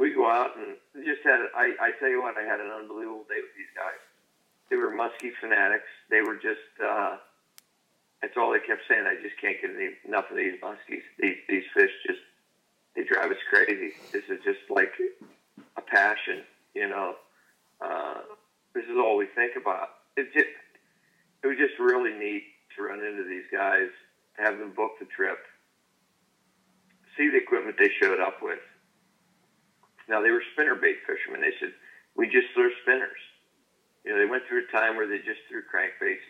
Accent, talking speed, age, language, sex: American, 180 wpm, 50-69, English, male